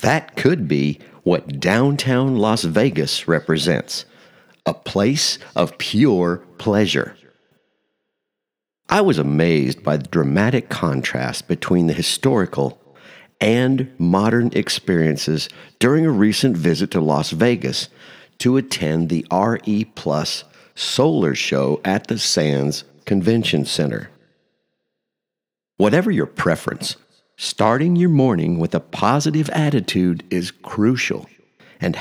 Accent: American